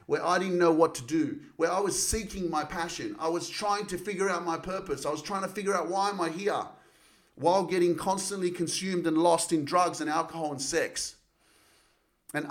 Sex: male